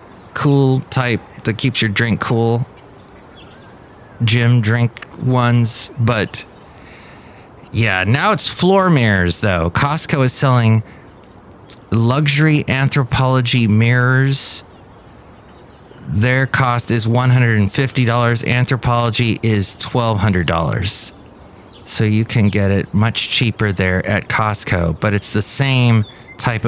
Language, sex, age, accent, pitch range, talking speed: English, male, 30-49, American, 100-125 Hz, 100 wpm